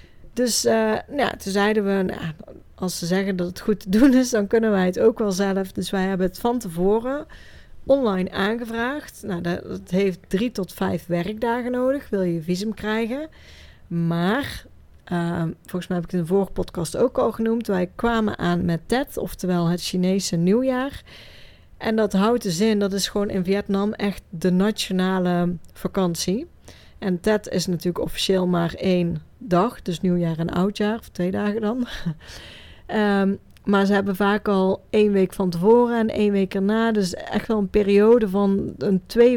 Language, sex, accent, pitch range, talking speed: Dutch, female, Dutch, 180-220 Hz, 180 wpm